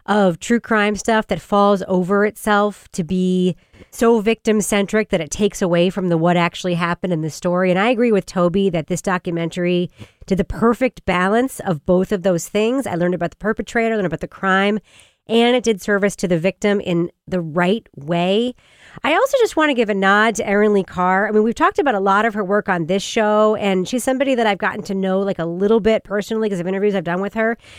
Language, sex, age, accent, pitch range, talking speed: English, female, 40-59, American, 185-230 Hz, 230 wpm